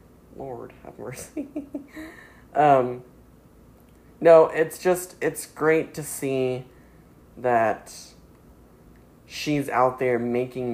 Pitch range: 115-140 Hz